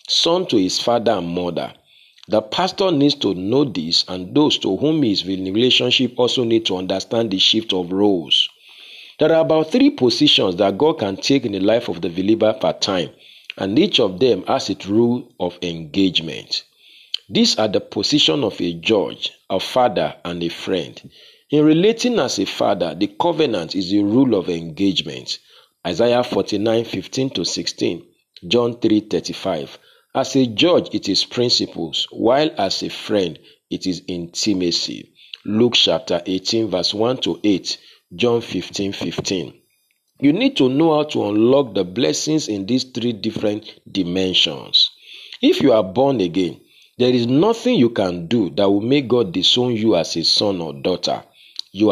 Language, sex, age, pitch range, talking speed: English, male, 40-59, 95-130 Hz, 170 wpm